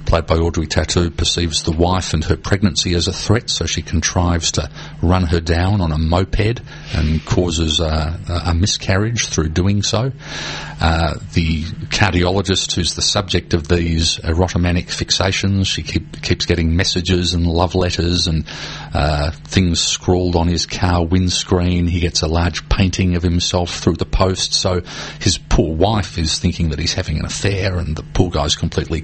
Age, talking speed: 40-59, 165 wpm